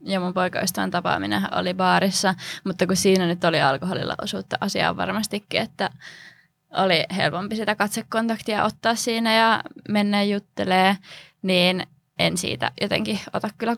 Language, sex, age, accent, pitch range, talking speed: Finnish, female, 20-39, native, 180-210 Hz, 135 wpm